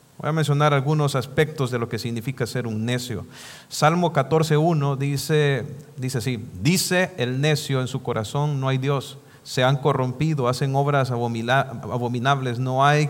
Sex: male